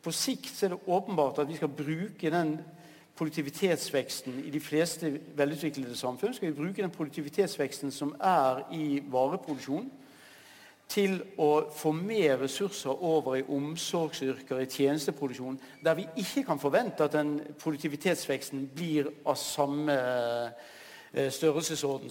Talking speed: 130 wpm